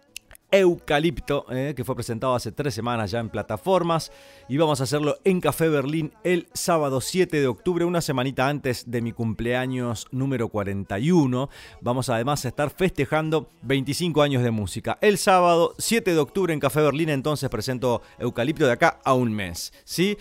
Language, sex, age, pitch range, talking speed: Spanish, male, 30-49, 125-165 Hz, 165 wpm